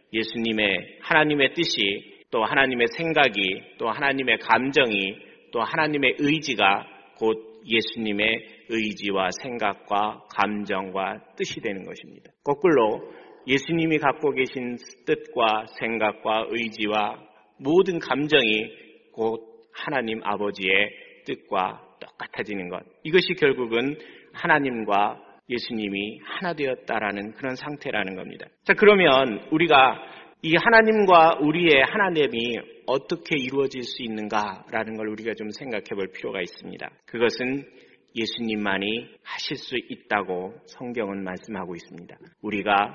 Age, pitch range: 40-59, 105-150 Hz